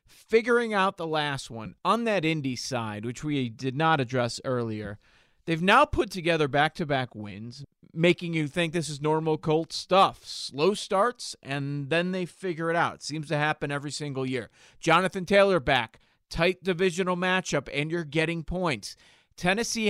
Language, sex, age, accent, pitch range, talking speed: English, male, 40-59, American, 135-180 Hz, 170 wpm